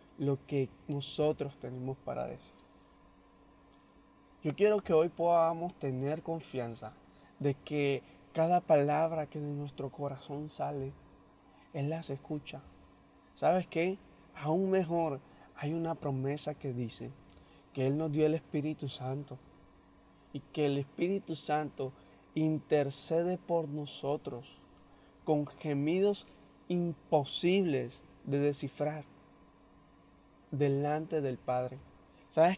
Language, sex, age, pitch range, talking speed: Spanish, male, 20-39, 135-165 Hz, 105 wpm